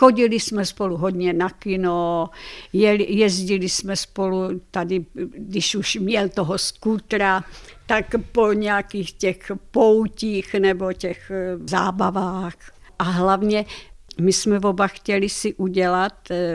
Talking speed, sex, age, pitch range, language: 110 wpm, female, 60-79, 180-205 Hz, Czech